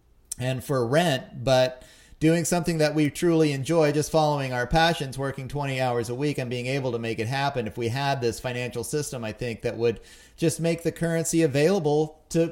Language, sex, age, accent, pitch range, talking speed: English, male, 30-49, American, 125-160 Hz, 200 wpm